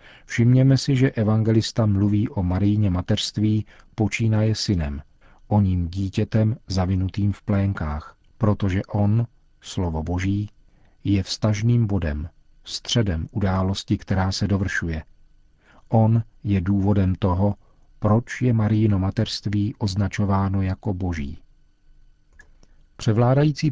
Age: 40-59